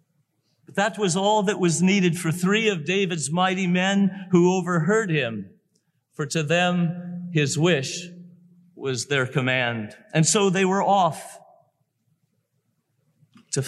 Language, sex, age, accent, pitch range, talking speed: English, male, 50-69, American, 145-185 Hz, 125 wpm